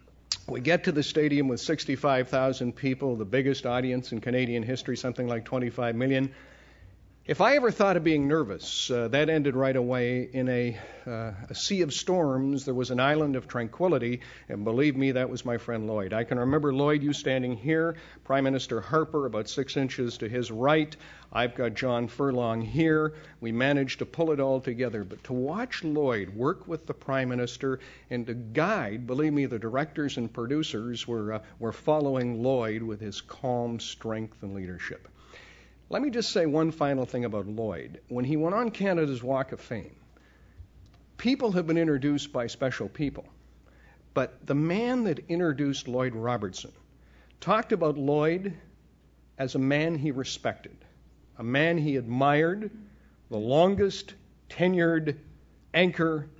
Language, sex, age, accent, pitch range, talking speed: English, male, 50-69, American, 120-150 Hz, 165 wpm